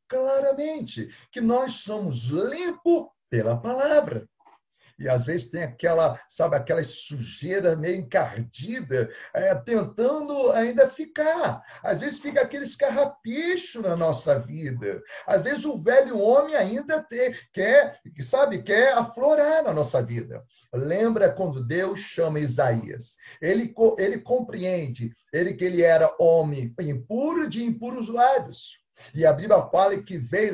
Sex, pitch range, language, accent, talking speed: male, 160-265 Hz, Portuguese, Brazilian, 120 wpm